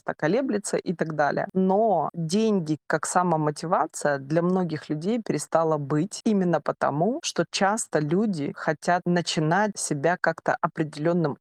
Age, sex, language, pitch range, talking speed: 20-39, female, Russian, 155-190 Hz, 125 wpm